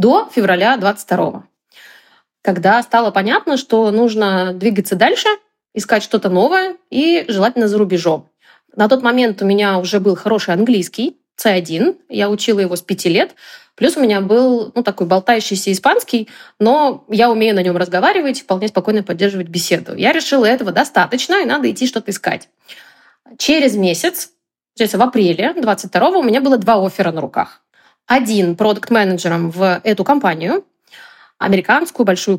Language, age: Russian, 20-39